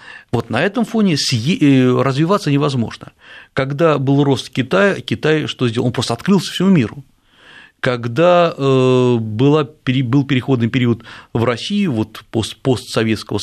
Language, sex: Russian, male